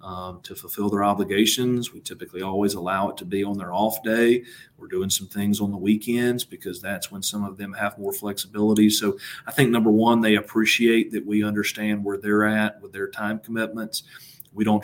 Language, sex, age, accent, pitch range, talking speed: English, male, 40-59, American, 100-110 Hz, 205 wpm